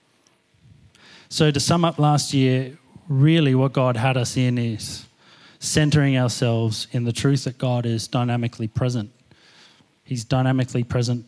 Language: English